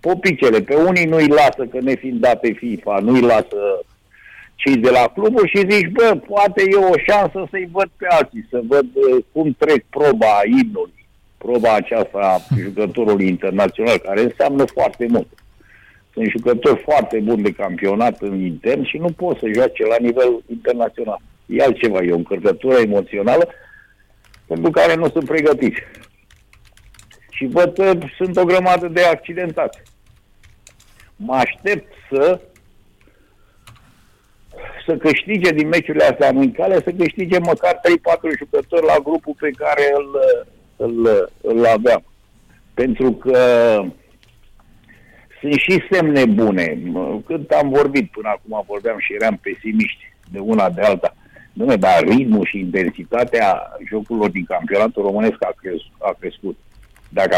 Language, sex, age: Romanian, male, 60-79